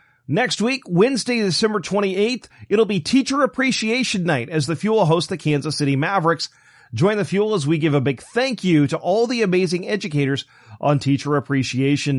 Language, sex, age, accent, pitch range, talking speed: English, male, 40-59, American, 140-195 Hz, 175 wpm